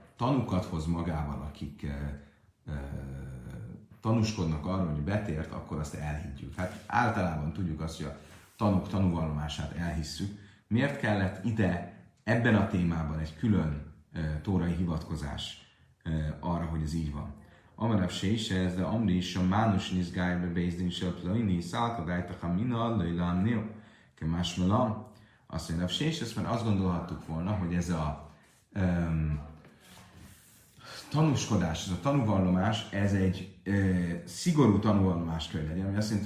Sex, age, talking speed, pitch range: male, 30-49, 125 wpm, 80-105 Hz